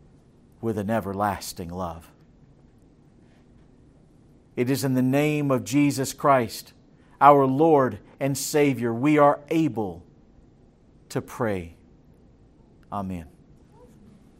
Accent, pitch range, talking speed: American, 140-200 Hz, 90 wpm